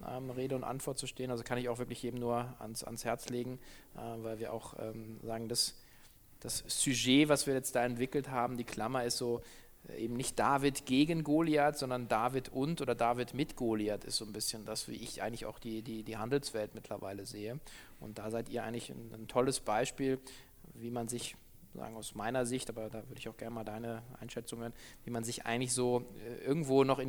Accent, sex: German, male